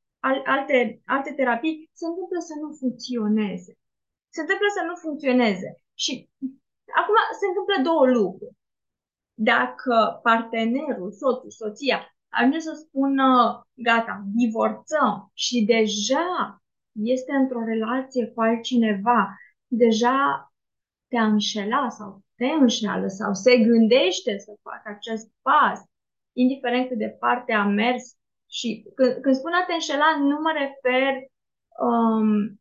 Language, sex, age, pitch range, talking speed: Romanian, female, 20-39, 230-280 Hz, 120 wpm